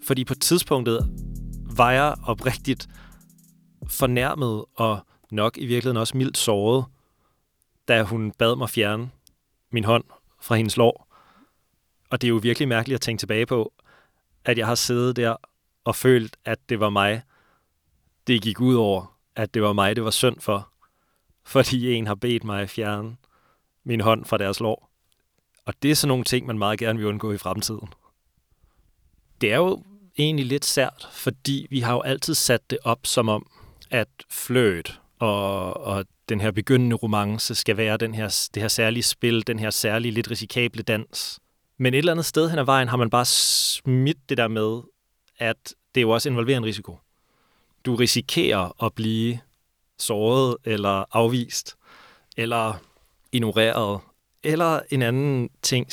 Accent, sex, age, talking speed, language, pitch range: native, male, 30-49, 160 wpm, Danish, 110-130 Hz